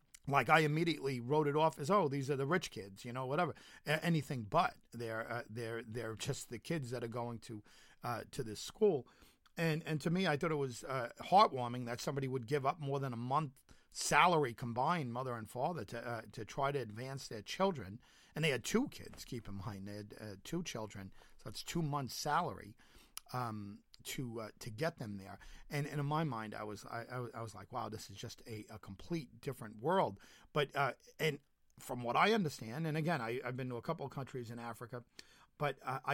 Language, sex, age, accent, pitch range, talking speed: English, male, 40-59, American, 115-160 Hz, 225 wpm